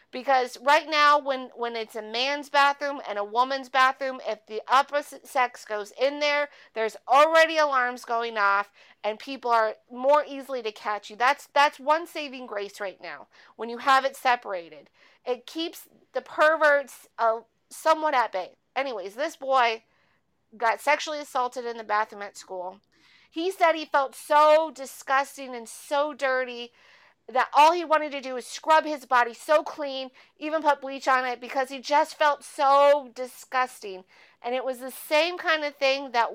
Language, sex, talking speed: English, female, 175 wpm